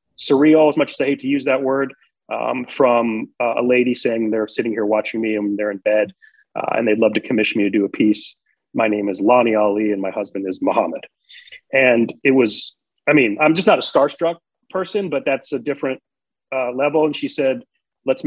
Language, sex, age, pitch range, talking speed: English, male, 30-49, 115-155 Hz, 215 wpm